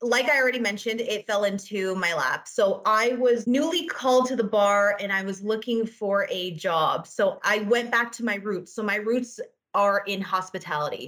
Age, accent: 20-39, American